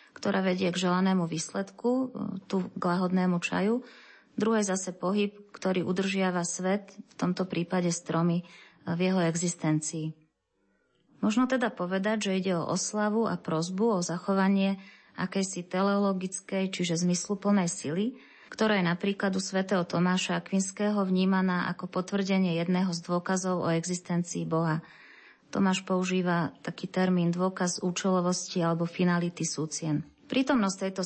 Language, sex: Slovak, female